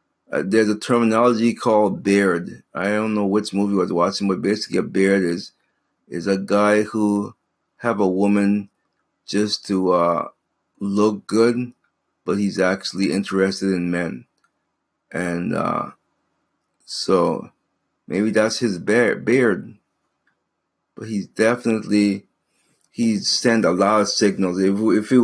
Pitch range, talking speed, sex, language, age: 95-110 Hz, 135 wpm, male, English, 30-49